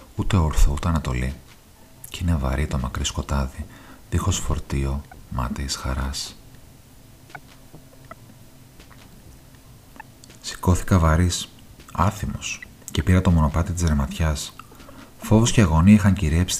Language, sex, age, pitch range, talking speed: Greek, male, 40-59, 75-95 Hz, 100 wpm